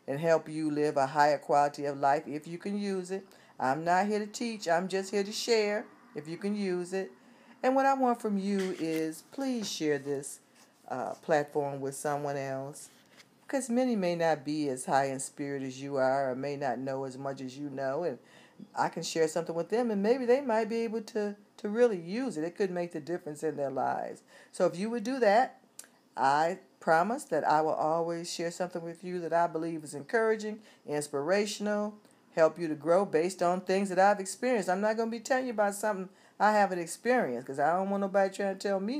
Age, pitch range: 50-69, 145-205 Hz